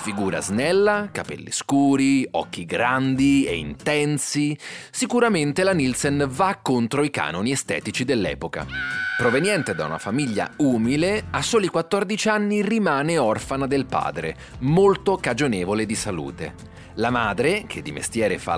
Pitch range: 120-200 Hz